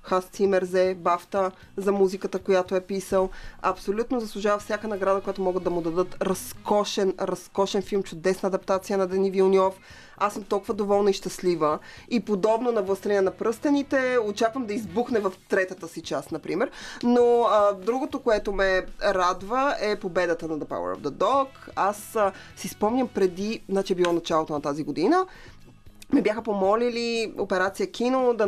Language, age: Bulgarian, 20-39